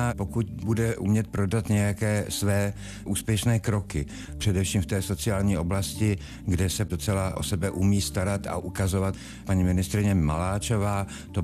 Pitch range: 90-105 Hz